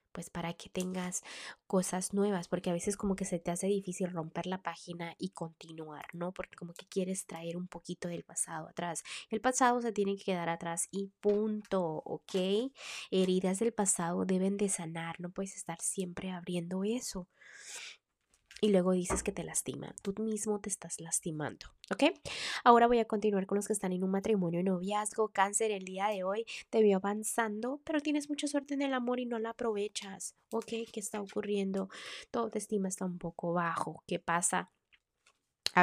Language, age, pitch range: Spanish, 20-39, 175-215 Hz